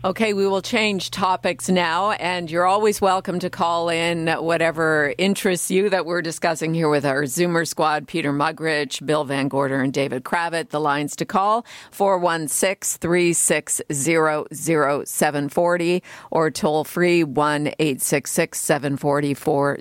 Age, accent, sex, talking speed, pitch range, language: 50-69, American, female, 165 wpm, 150-185 Hz, English